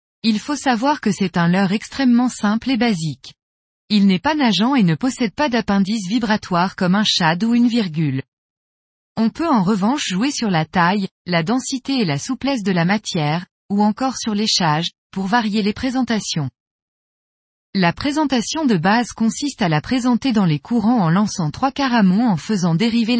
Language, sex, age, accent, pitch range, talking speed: French, female, 20-39, French, 185-245 Hz, 180 wpm